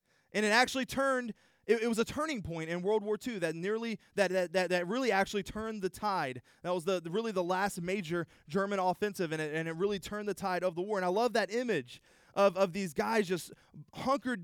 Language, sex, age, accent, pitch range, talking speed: English, male, 20-39, American, 140-205 Hz, 235 wpm